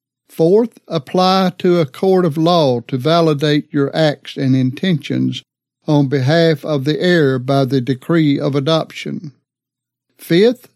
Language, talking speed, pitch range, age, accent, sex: English, 135 wpm, 140-170 Hz, 60-79, American, male